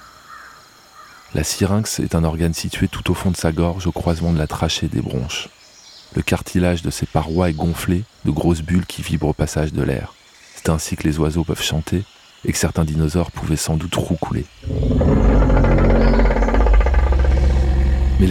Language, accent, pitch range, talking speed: French, French, 75-90 Hz, 165 wpm